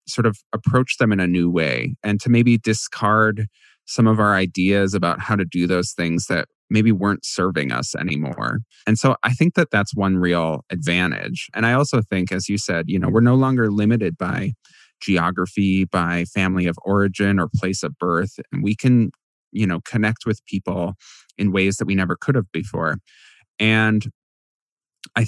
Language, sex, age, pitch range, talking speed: English, male, 20-39, 95-115 Hz, 185 wpm